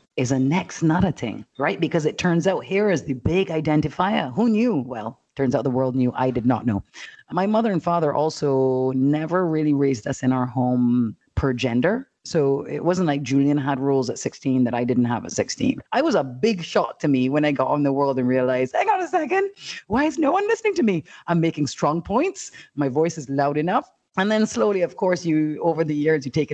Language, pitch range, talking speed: English, 130-195 Hz, 235 wpm